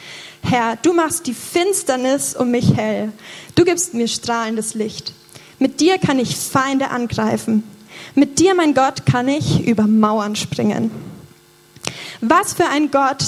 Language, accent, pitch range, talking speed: German, German, 230-295 Hz, 145 wpm